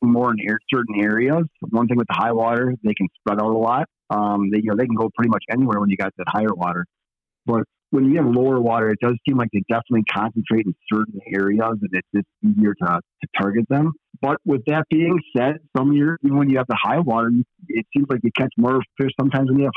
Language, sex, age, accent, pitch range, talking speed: English, male, 40-59, American, 110-135 Hz, 250 wpm